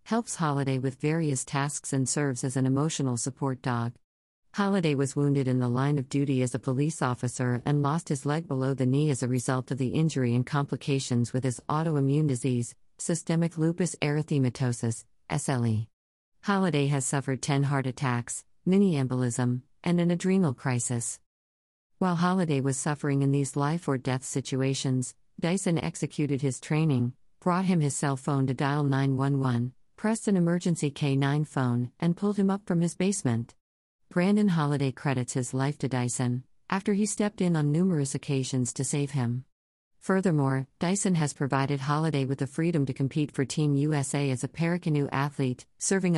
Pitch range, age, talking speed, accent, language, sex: 130-155 Hz, 50-69, 160 wpm, American, English, female